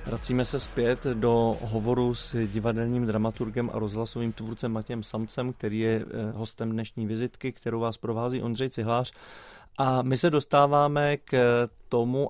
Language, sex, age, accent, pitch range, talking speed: Czech, male, 30-49, native, 115-125 Hz, 140 wpm